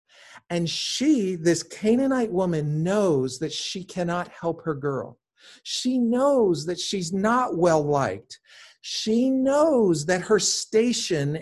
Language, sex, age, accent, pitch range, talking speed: English, male, 50-69, American, 160-220 Hz, 125 wpm